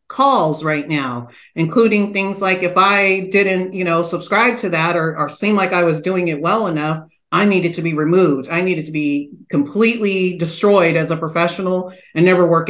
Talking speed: 195 wpm